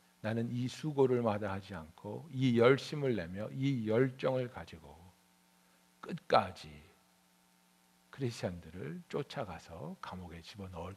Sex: male